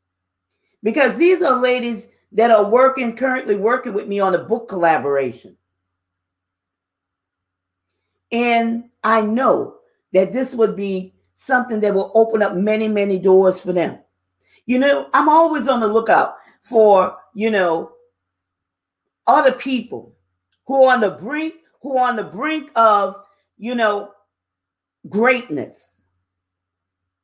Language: English